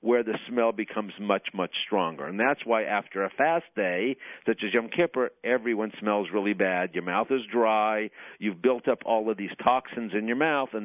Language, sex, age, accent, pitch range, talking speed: English, male, 50-69, American, 105-125 Hz, 205 wpm